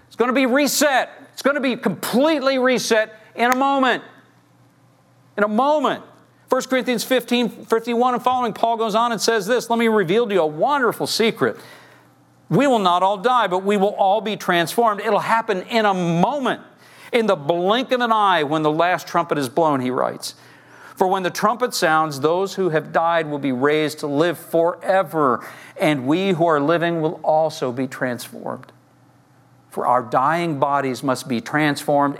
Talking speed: 185 wpm